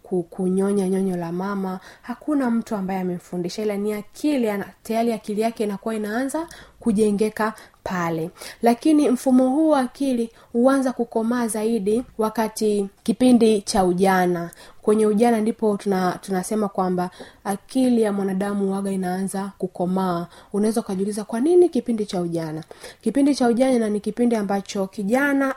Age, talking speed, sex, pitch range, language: 20-39, 130 wpm, female, 195-240 Hz, Swahili